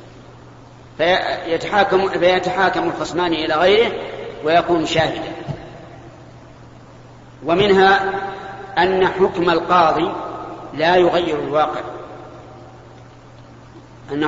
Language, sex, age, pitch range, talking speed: Arabic, male, 40-59, 165-190 Hz, 65 wpm